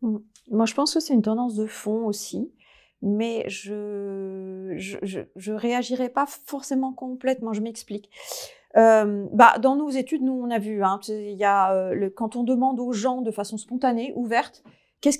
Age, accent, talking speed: 30-49, French, 165 wpm